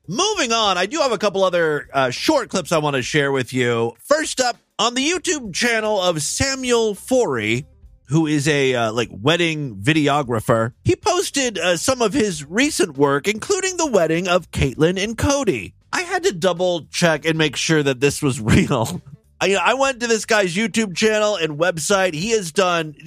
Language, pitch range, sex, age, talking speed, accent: English, 140-210 Hz, male, 30-49, 190 wpm, American